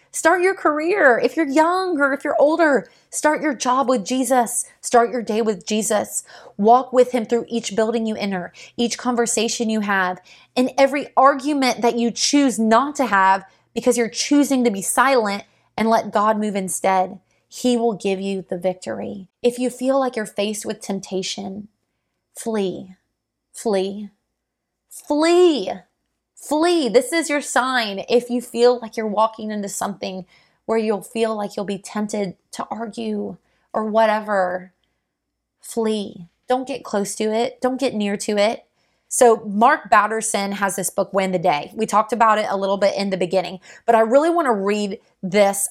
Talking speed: 170 wpm